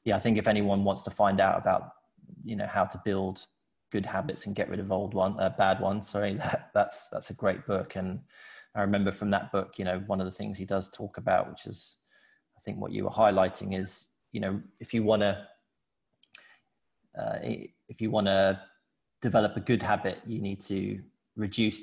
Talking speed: 215 wpm